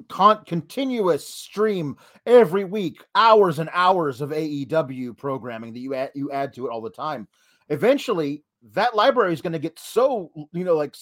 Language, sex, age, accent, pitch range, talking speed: English, male, 30-49, American, 150-200 Hz, 170 wpm